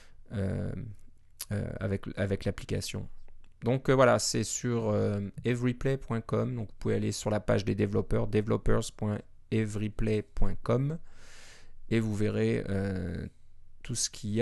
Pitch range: 100-120 Hz